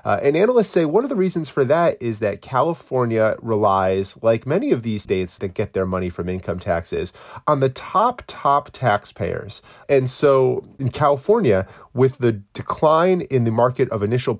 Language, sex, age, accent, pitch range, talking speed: English, male, 30-49, American, 105-135 Hz, 180 wpm